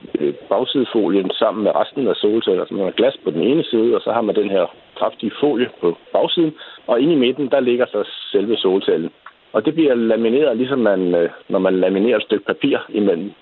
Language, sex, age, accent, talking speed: Danish, male, 60-79, native, 205 wpm